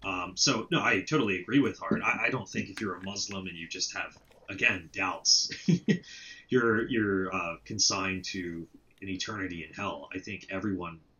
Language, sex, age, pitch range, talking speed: English, male, 30-49, 95-110 Hz, 180 wpm